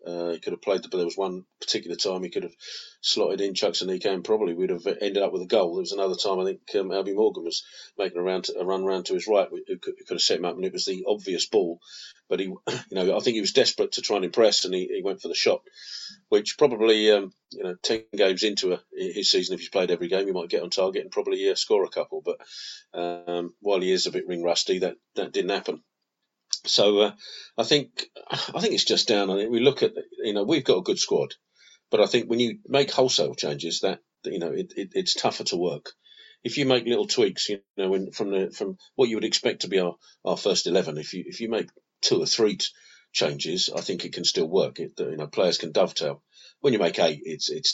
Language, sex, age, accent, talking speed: English, male, 40-59, British, 265 wpm